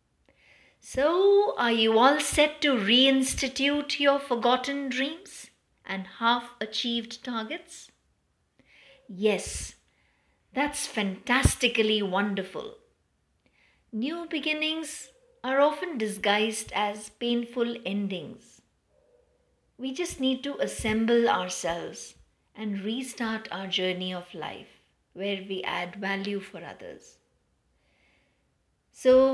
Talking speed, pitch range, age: 90 wpm, 200-275 Hz, 50-69